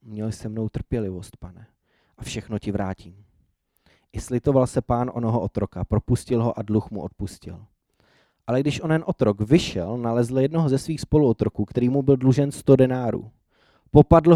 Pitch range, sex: 105-130 Hz, male